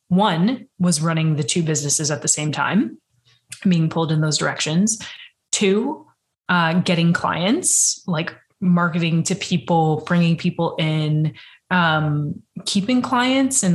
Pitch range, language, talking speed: 160-205 Hz, English, 130 wpm